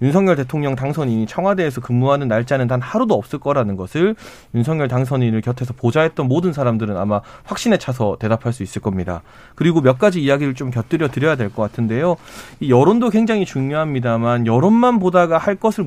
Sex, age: male, 30-49